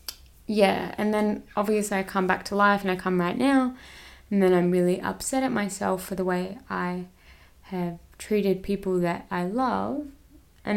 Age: 20-39